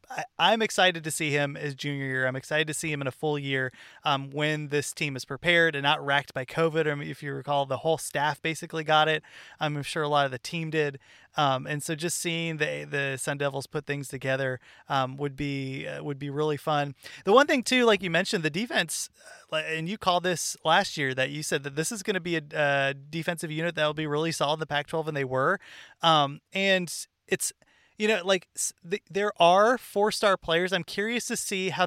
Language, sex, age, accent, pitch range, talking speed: English, male, 30-49, American, 145-185 Hz, 225 wpm